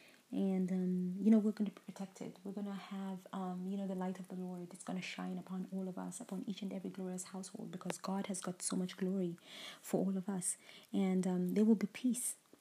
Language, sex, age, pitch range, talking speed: English, female, 20-39, 180-200 Hz, 245 wpm